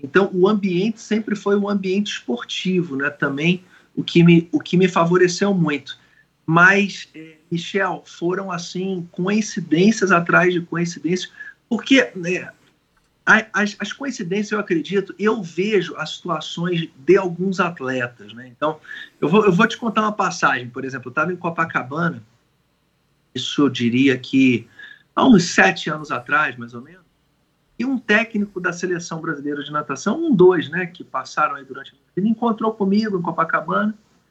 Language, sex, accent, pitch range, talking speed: Portuguese, male, Brazilian, 165-210 Hz, 155 wpm